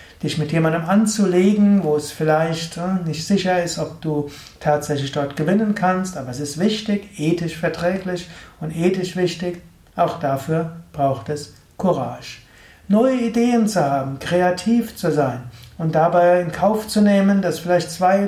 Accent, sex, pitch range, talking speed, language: German, male, 155-190 Hz, 150 wpm, German